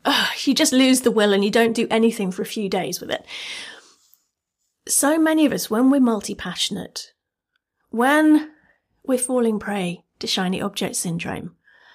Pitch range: 210-285 Hz